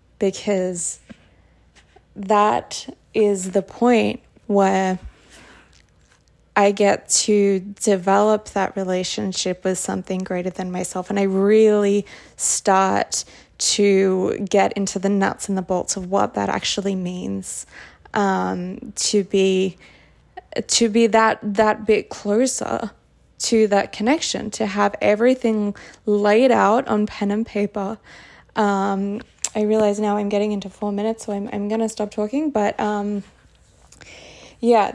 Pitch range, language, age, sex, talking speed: 195-215 Hz, English, 20-39, female, 125 wpm